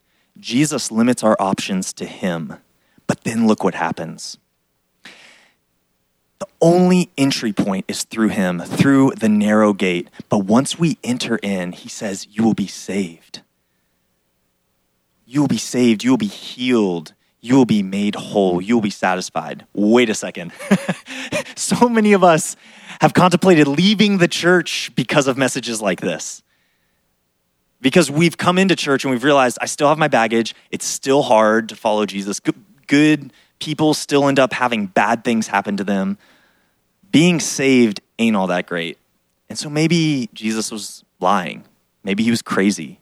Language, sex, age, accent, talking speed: English, male, 20-39, American, 160 wpm